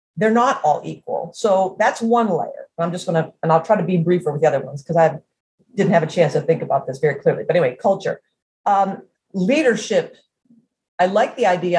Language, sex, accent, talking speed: English, female, American, 220 wpm